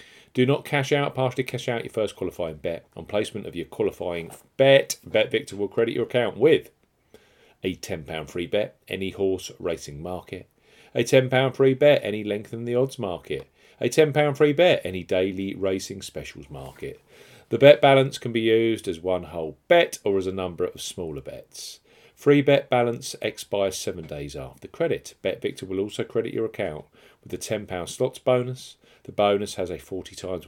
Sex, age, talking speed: male, 40-59, 185 wpm